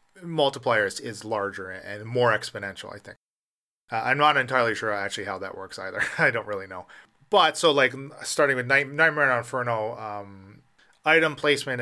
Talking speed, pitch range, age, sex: 170 wpm, 115-145 Hz, 30-49, male